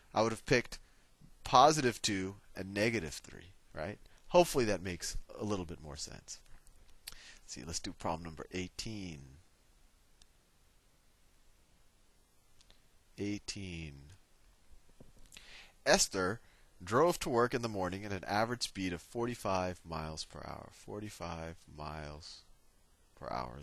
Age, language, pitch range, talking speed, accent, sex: 30-49, English, 80-130 Hz, 115 wpm, American, male